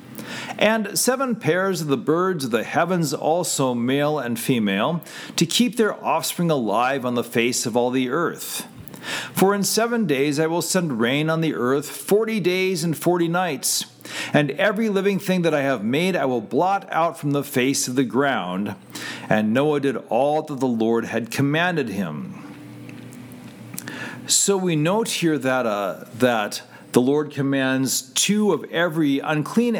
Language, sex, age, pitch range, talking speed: English, male, 40-59, 125-175 Hz, 165 wpm